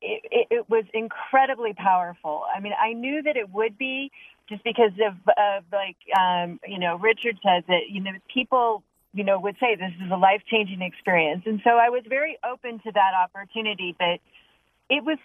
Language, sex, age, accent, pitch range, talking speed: English, female, 30-49, American, 195-240 Hz, 195 wpm